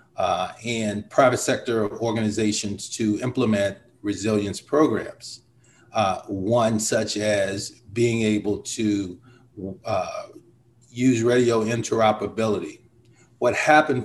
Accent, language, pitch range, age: American, English, 110-130 Hz, 40-59